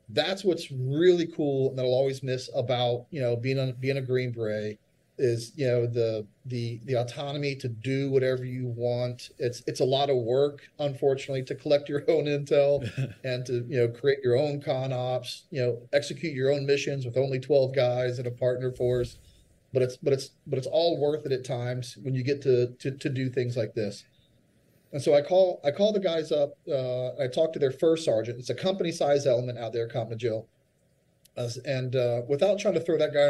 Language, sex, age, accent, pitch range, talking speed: English, male, 40-59, American, 125-145 Hz, 215 wpm